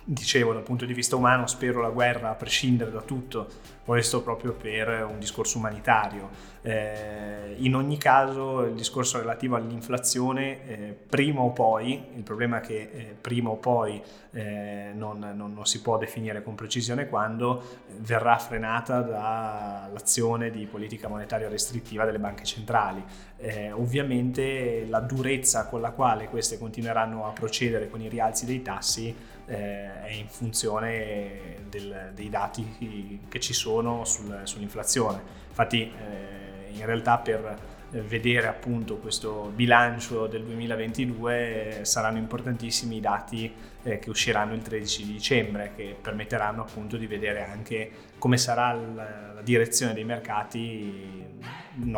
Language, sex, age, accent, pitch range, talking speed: Italian, male, 20-39, native, 105-120 Hz, 140 wpm